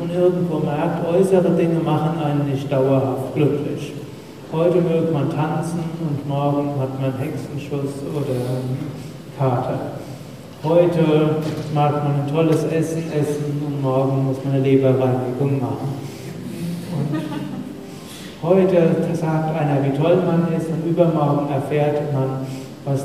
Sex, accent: male, German